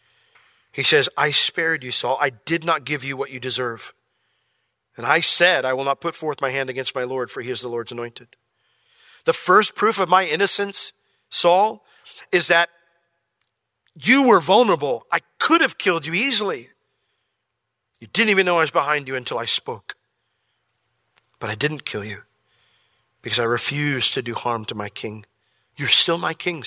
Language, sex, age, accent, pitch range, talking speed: English, male, 40-59, American, 120-160 Hz, 180 wpm